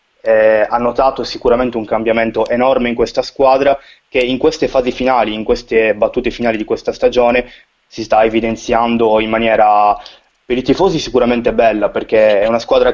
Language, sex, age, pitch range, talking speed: Italian, male, 20-39, 110-140 Hz, 165 wpm